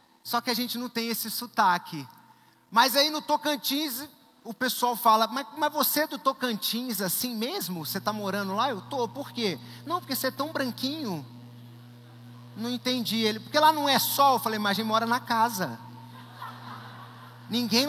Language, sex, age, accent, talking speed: Gujarati, male, 30-49, Brazilian, 180 wpm